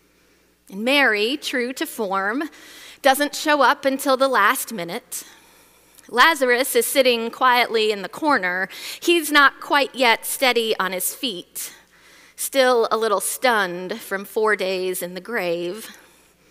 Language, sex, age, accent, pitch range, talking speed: English, female, 30-49, American, 190-270 Hz, 135 wpm